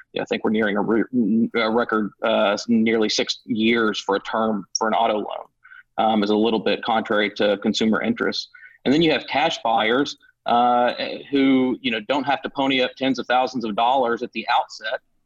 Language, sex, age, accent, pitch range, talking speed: English, male, 40-59, American, 115-135 Hz, 195 wpm